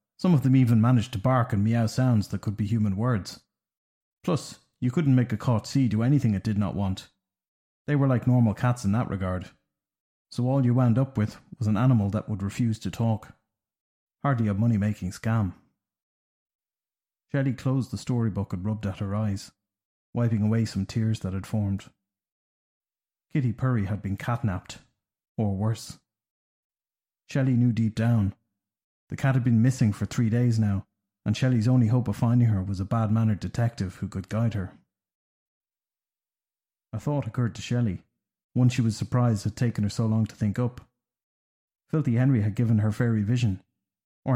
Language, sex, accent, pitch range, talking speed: English, male, Irish, 100-125 Hz, 175 wpm